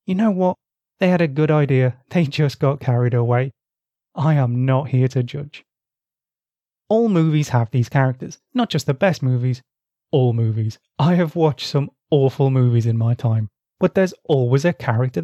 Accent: British